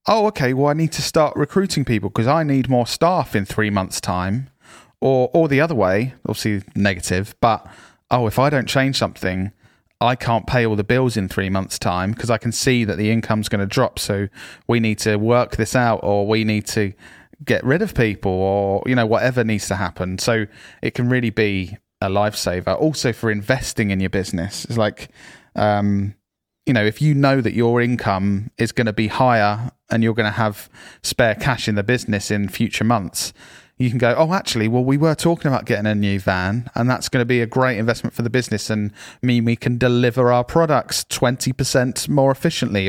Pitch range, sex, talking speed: 105-130 Hz, male, 210 wpm